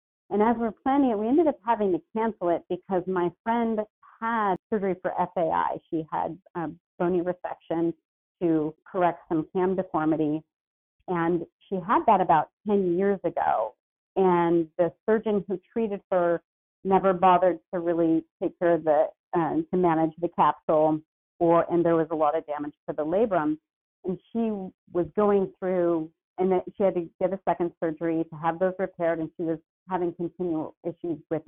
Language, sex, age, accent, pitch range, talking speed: English, female, 40-59, American, 165-195 Hz, 175 wpm